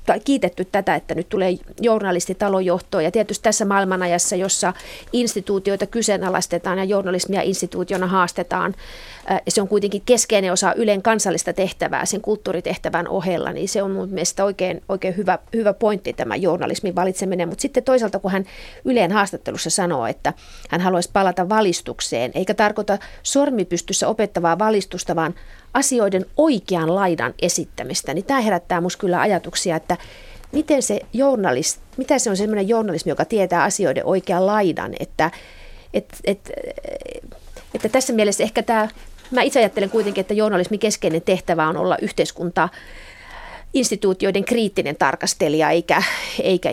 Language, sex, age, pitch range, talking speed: Finnish, female, 30-49, 180-215 Hz, 140 wpm